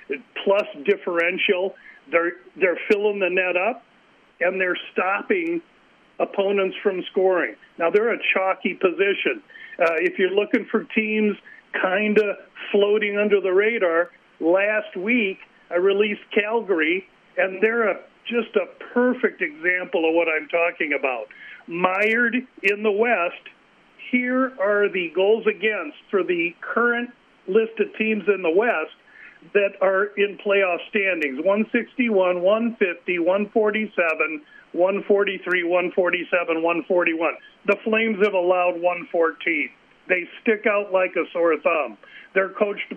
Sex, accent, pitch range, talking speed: male, American, 180-220 Hz, 125 wpm